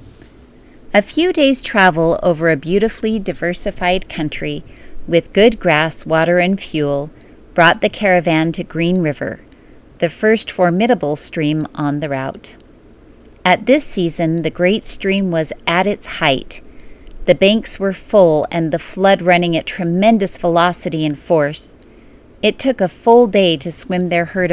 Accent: American